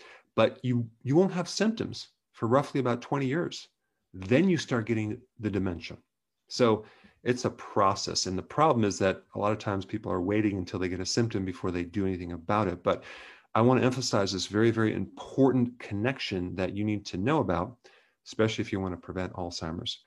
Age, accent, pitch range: 40-59, American, 95-120 Hz